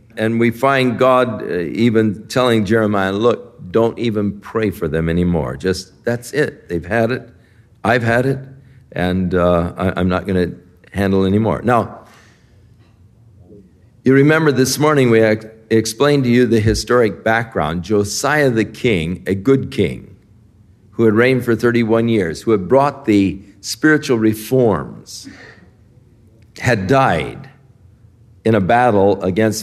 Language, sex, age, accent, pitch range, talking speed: English, male, 50-69, American, 105-130 Hz, 140 wpm